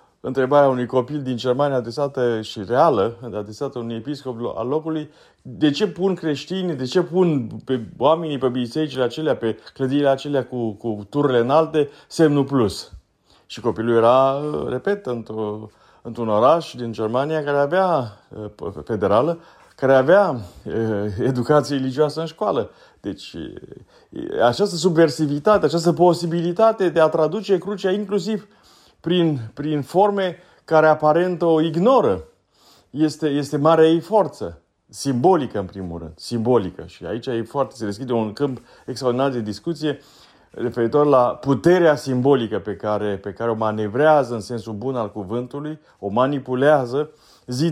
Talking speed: 135 wpm